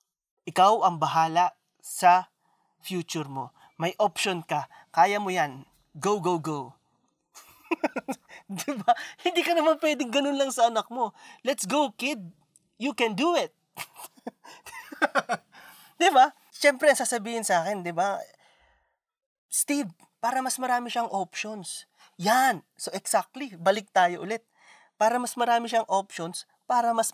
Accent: native